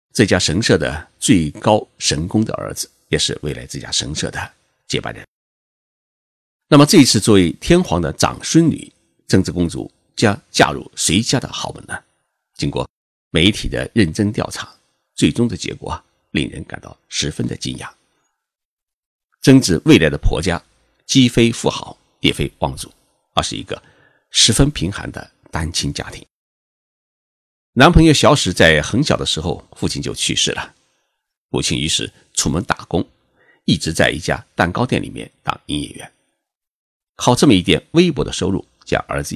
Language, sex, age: Chinese, male, 50-69